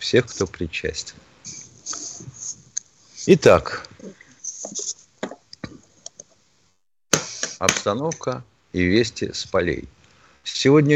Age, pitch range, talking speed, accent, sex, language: 50-69, 85-125 Hz, 55 wpm, native, male, Russian